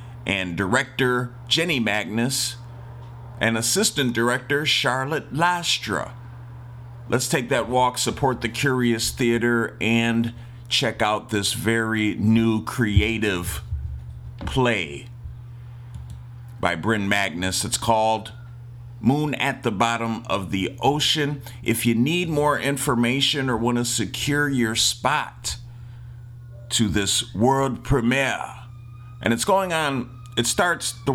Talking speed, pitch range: 110 wpm, 115-125 Hz